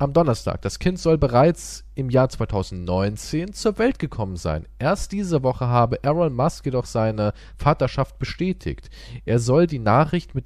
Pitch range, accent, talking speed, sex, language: 105-160 Hz, German, 160 wpm, male, German